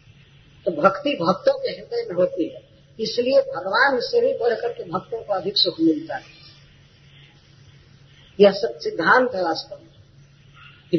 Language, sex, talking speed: Hindi, female, 135 wpm